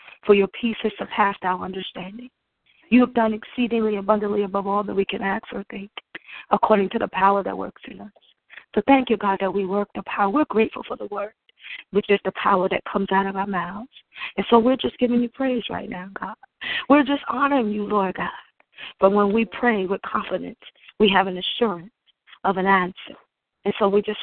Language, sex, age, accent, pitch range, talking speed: English, female, 30-49, American, 195-235 Hz, 210 wpm